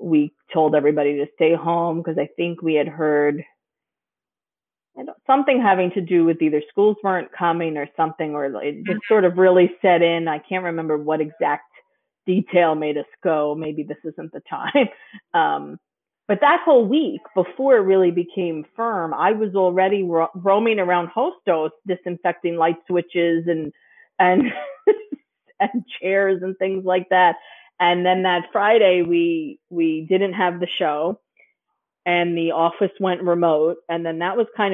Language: English